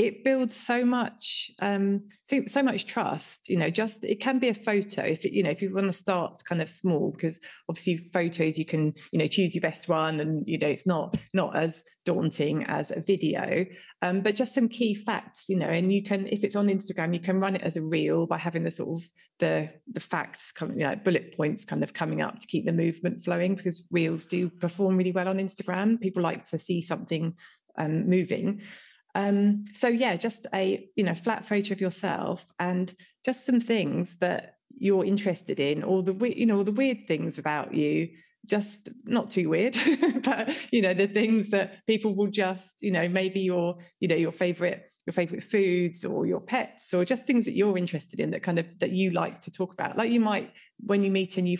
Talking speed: 220 wpm